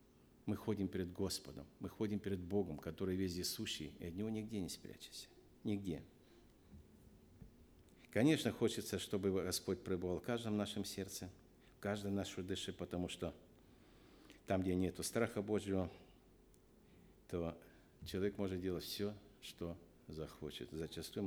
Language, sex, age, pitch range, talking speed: Russian, male, 60-79, 90-110 Hz, 130 wpm